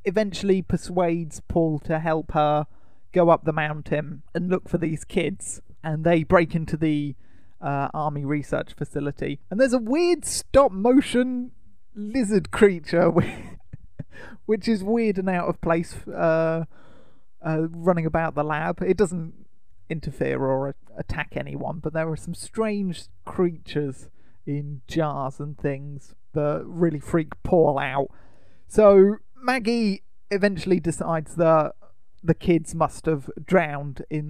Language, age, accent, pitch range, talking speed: English, 30-49, British, 150-180 Hz, 135 wpm